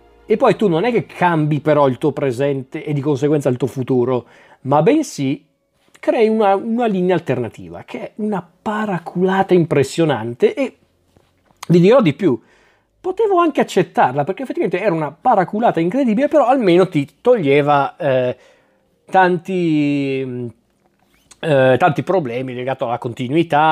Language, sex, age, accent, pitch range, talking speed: Italian, male, 30-49, native, 130-180 Hz, 135 wpm